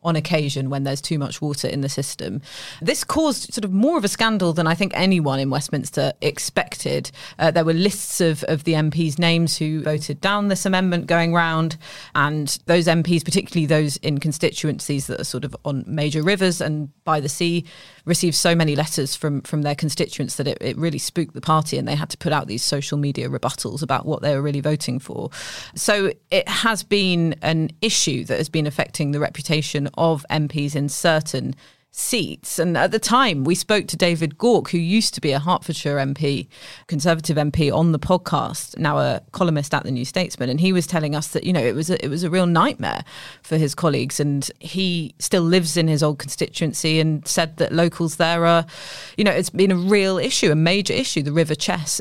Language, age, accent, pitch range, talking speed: English, 30-49, British, 145-175 Hz, 210 wpm